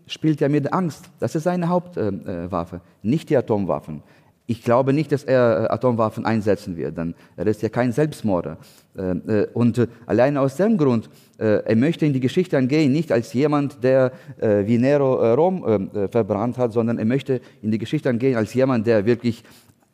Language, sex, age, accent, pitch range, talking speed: German, male, 30-49, German, 110-135 Hz, 195 wpm